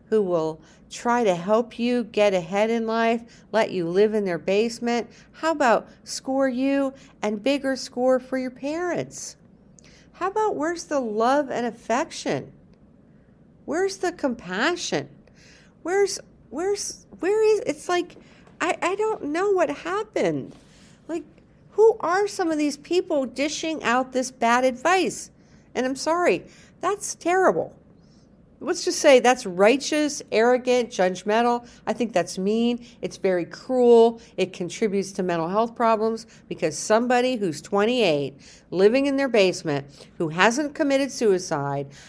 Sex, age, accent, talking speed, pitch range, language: female, 50-69, American, 140 wpm, 200-280 Hz, English